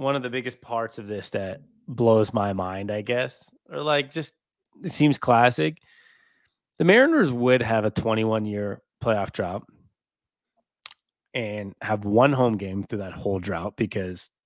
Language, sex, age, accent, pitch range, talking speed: English, male, 20-39, American, 105-145 Hz, 160 wpm